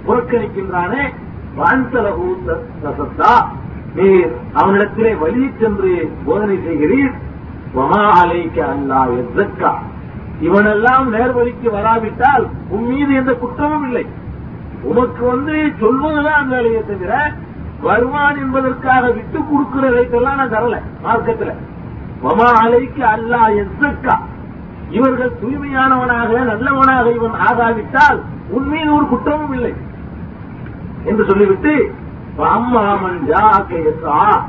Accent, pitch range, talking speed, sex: native, 215-270 Hz, 85 wpm, male